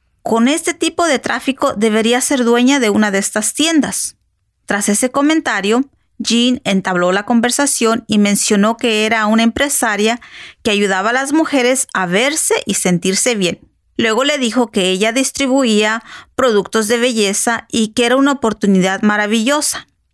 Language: English